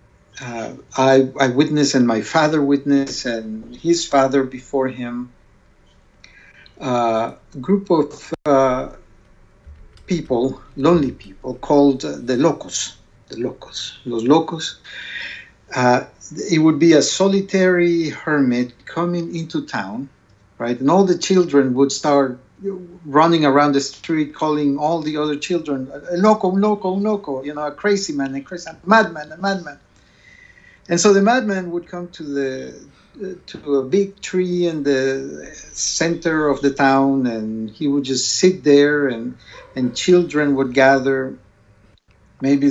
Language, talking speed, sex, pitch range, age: English, 140 wpm, male, 130-160 Hz, 60-79